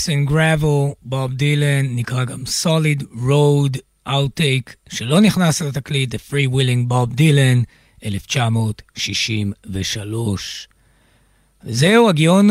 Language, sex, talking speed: Hebrew, male, 80 wpm